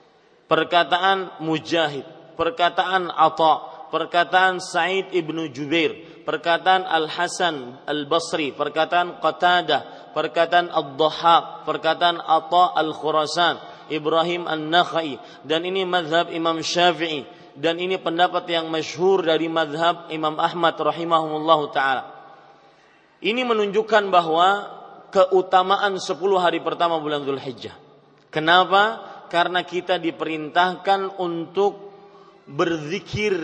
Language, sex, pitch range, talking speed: Malay, male, 155-175 Hz, 95 wpm